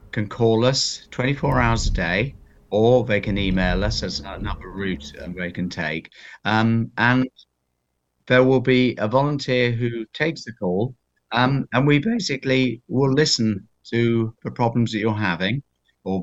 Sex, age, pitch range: male, 50-69, 100-125 Hz